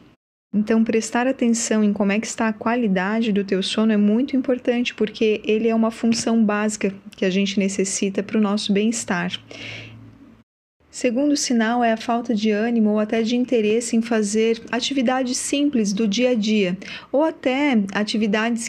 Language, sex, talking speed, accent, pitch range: Portuguese, female, 165 wpm, Brazilian, 195-235 Hz